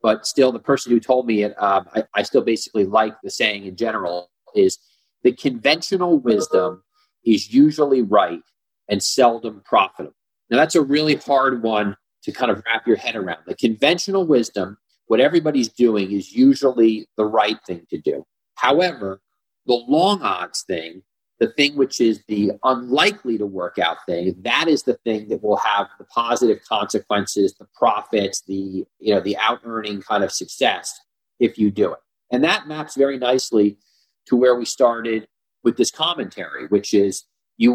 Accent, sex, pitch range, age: American, male, 105-140 Hz, 40-59